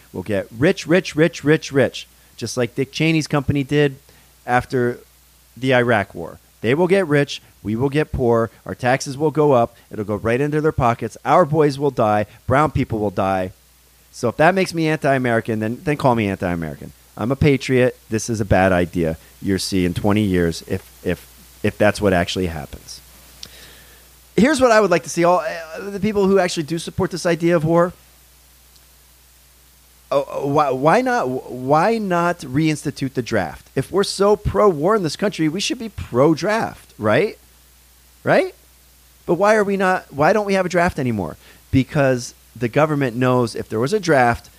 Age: 40-59